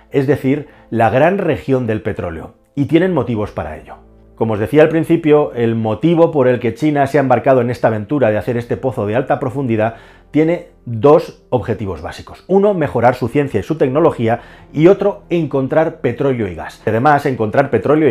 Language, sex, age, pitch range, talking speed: Spanish, male, 40-59, 110-145 Hz, 185 wpm